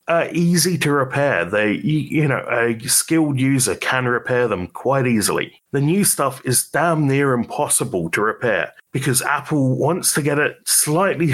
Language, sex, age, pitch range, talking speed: English, male, 30-49, 115-150 Hz, 170 wpm